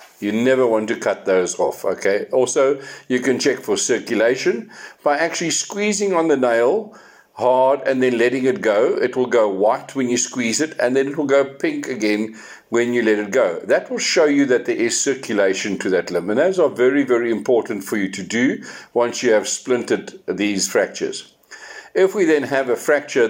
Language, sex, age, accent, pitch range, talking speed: English, male, 60-79, South African, 120-175 Hz, 205 wpm